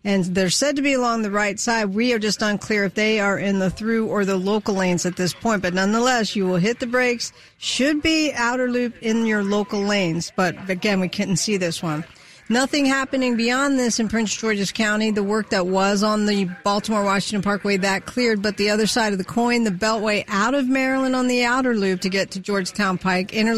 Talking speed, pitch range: 225 wpm, 195-230 Hz